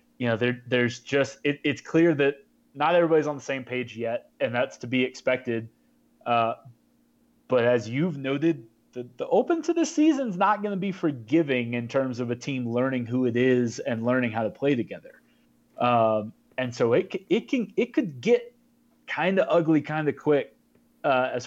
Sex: male